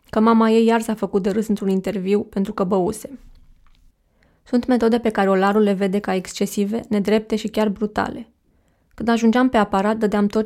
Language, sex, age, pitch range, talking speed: Romanian, female, 20-39, 200-225 Hz, 185 wpm